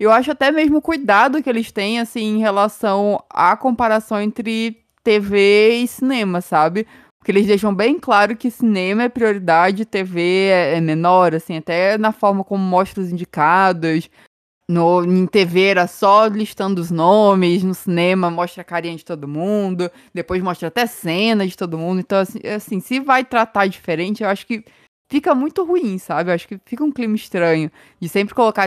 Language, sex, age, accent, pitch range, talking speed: Portuguese, female, 20-39, Brazilian, 180-225 Hz, 180 wpm